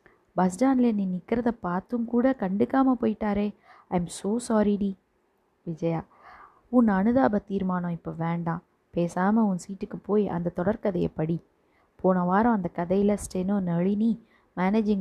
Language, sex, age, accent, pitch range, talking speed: Tamil, female, 20-39, native, 180-220 Hz, 130 wpm